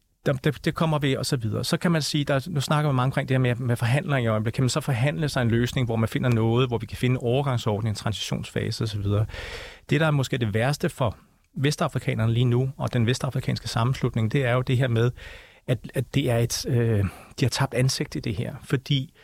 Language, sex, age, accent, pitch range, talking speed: Danish, male, 40-59, native, 115-140 Hz, 245 wpm